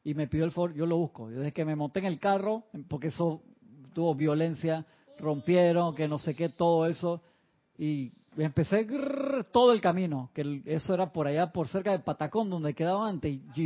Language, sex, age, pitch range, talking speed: Spanish, male, 40-59, 150-185 Hz, 200 wpm